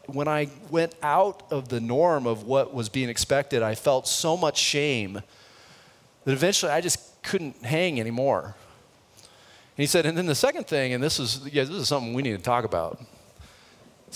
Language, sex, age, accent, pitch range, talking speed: English, male, 30-49, American, 115-150 Hz, 190 wpm